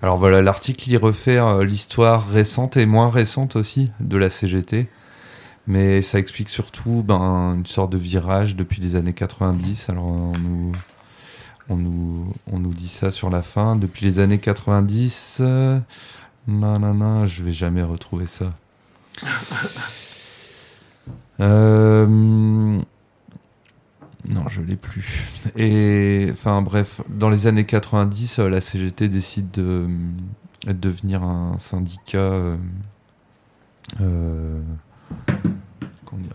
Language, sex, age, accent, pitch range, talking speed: French, male, 30-49, French, 90-110 Hz, 120 wpm